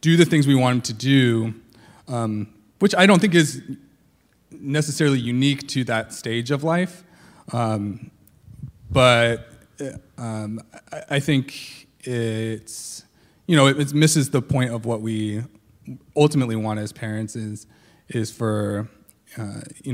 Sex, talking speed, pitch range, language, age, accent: male, 140 wpm, 110-140 Hz, English, 30-49, American